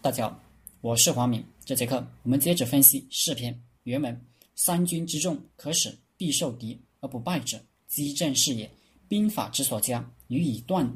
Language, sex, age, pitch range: Chinese, male, 20-39, 120-155 Hz